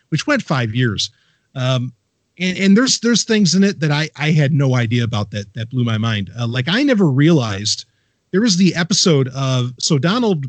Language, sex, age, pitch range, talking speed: English, male, 40-59, 115-155 Hz, 205 wpm